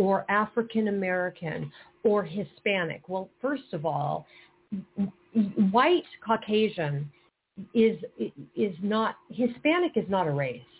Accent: American